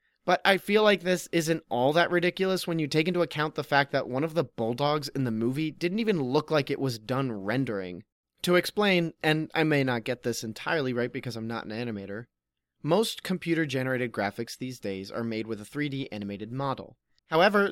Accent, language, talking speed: American, English, 205 wpm